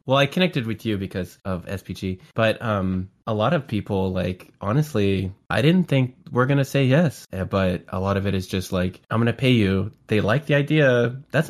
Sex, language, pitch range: male, English, 90-105 Hz